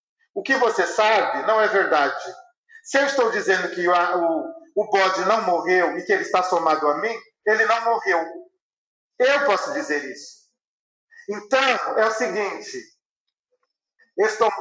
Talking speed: 150 wpm